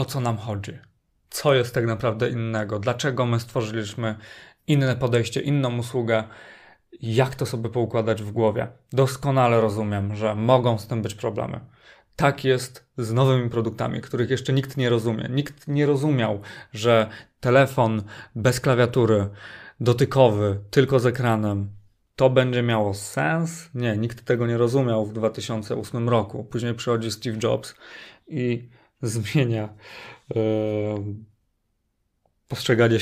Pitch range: 110-130 Hz